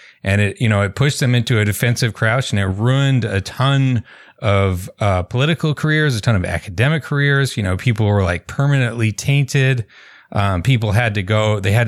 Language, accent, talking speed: English, American, 195 wpm